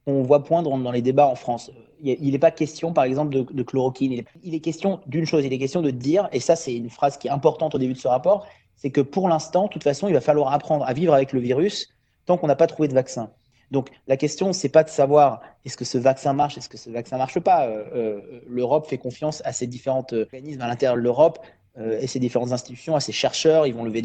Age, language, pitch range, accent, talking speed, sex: 30-49, French, 125-155 Hz, French, 260 wpm, male